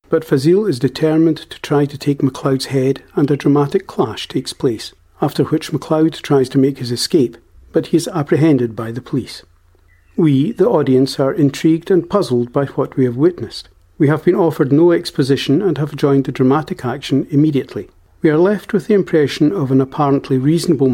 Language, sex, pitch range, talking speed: English, male, 130-160 Hz, 190 wpm